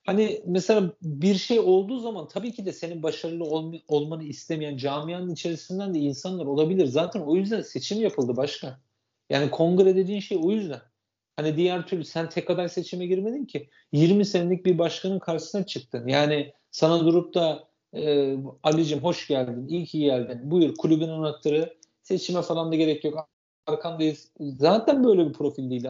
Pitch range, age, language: 140-185 Hz, 40-59, Turkish